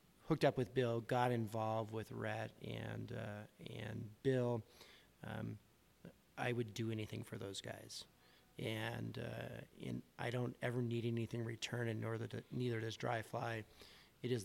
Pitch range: 110-125 Hz